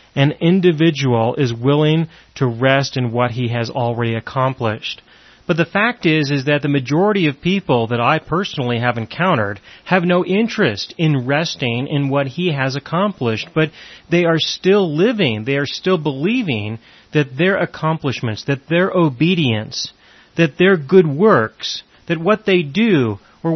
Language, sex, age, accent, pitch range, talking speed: English, male, 30-49, American, 130-185 Hz, 155 wpm